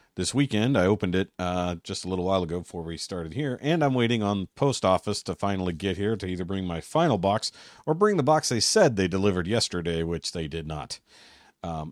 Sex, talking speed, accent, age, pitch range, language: male, 225 wpm, American, 40-59, 85-110 Hz, English